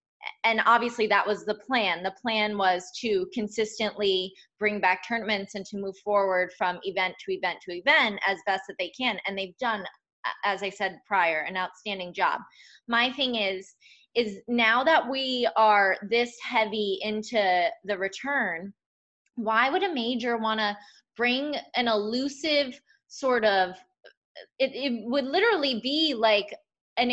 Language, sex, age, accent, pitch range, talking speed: English, female, 20-39, American, 200-260 Hz, 155 wpm